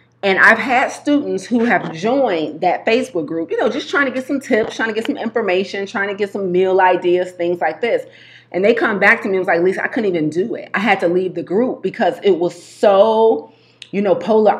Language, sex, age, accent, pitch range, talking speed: English, female, 30-49, American, 170-230 Hz, 245 wpm